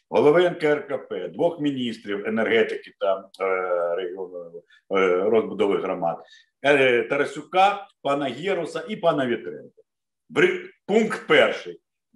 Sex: male